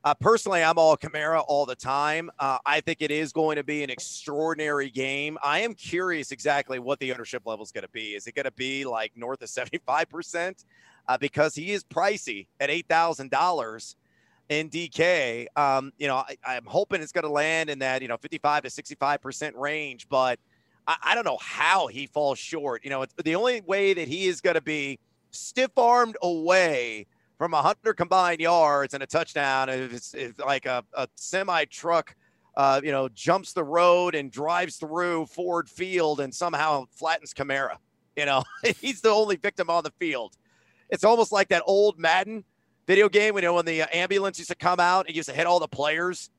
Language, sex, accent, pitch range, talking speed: English, male, American, 140-175 Hz, 195 wpm